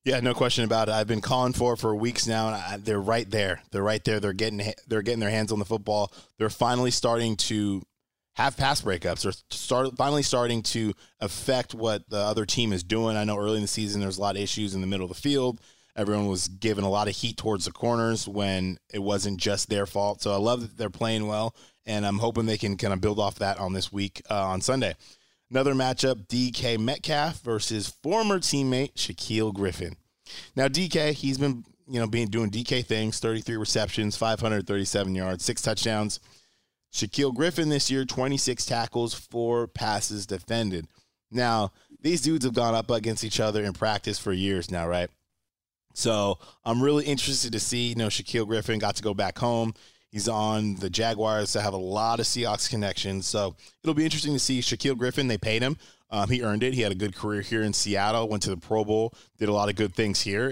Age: 20-39